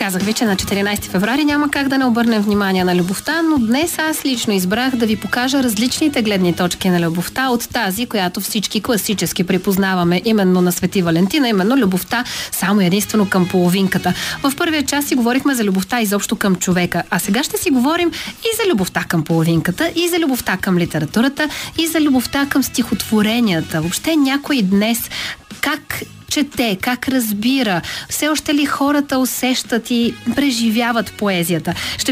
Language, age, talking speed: Bulgarian, 30-49, 165 wpm